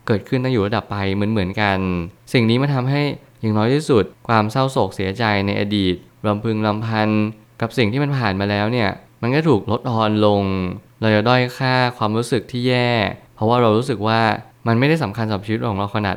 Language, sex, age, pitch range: Thai, male, 20-39, 105-125 Hz